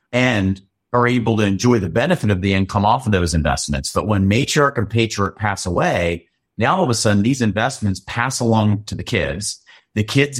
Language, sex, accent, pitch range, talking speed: English, male, American, 95-120 Hz, 200 wpm